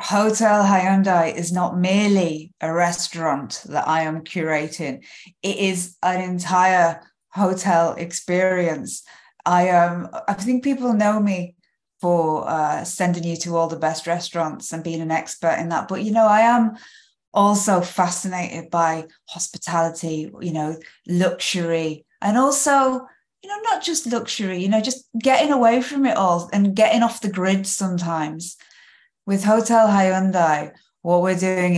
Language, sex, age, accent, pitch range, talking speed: English, female, 20-39, British, 165-200 Hz, 150 wpm